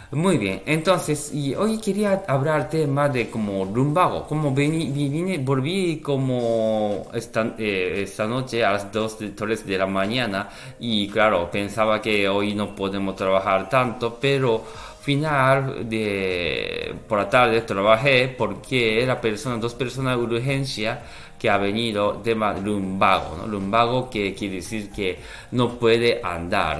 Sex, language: male, Japanese